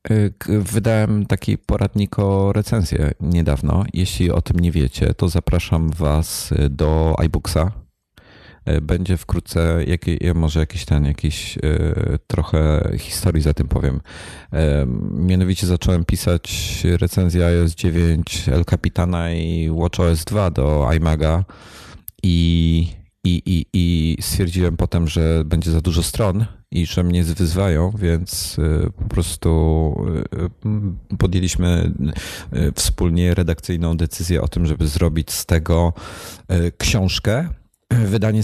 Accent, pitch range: native, 80-95 Hz